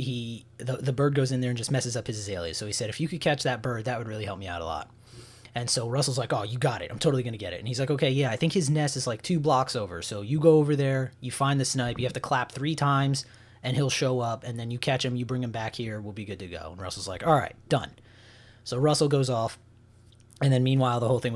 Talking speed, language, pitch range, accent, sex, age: 300 wpm, English, 115-135 Hz, American, male, 20-39